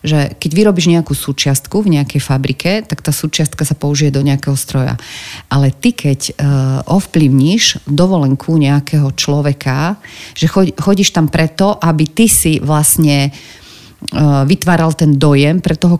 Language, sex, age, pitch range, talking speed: Slovak, female, 40-59, 140-170 Hz, 135 wpm